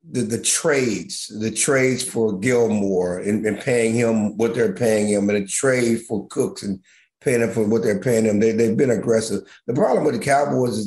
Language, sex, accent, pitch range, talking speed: English, male, American, 115-130 Hz, 210 wpm